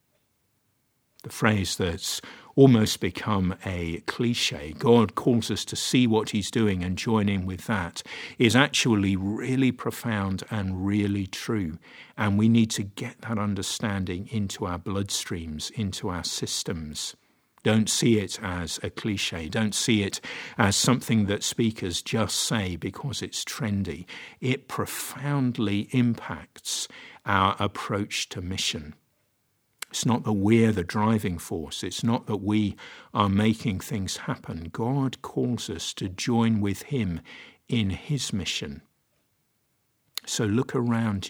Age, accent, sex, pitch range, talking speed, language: 50-69, British, male, 95-120 Hz, 135 wpm, English